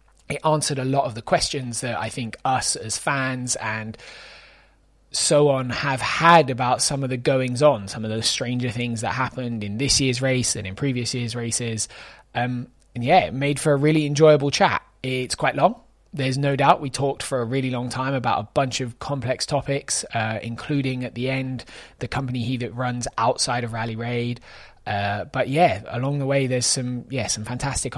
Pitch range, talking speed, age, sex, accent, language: 115-140 Hz, 200 wpm, 20-39, male, British, English